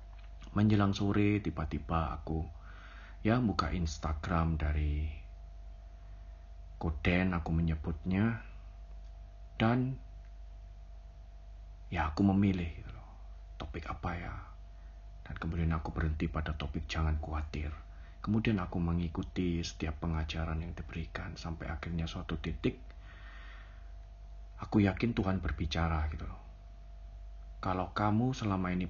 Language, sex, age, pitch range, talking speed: Indonesian, male, 40-59, 80-95 Hz, 100 wpm